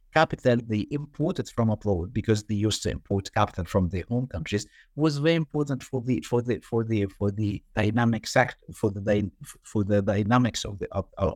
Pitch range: 105-150 Hz